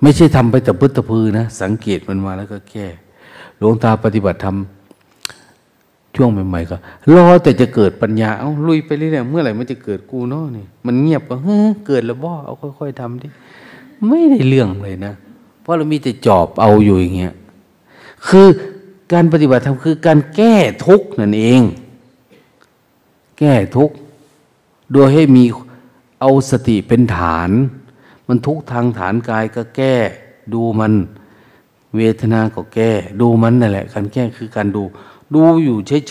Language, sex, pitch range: Thai, male, 105-140 Hz